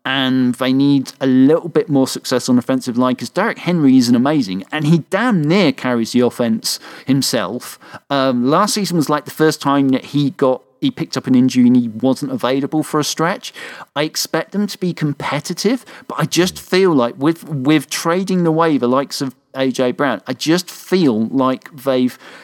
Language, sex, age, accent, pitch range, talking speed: English, male, 40-59, British, 130-165 Hz, 200 wpm